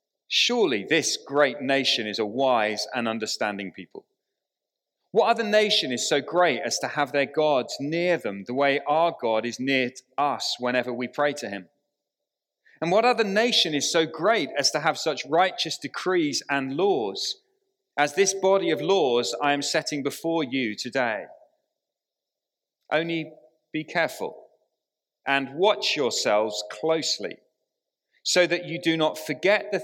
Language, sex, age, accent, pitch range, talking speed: English, male, 40-59, British, 130-195 Hz, 150 wpm